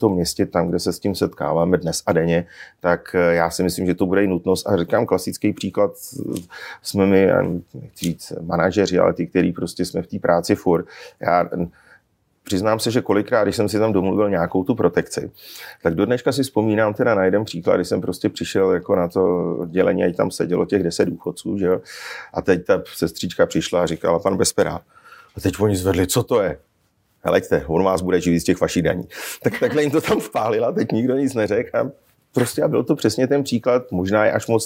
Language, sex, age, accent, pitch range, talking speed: Czech, male, 40-59, native, 90-110 Hz, 210 wpm